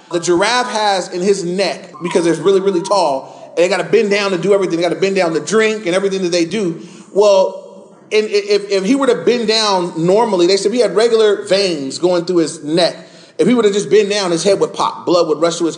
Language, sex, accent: English, male, American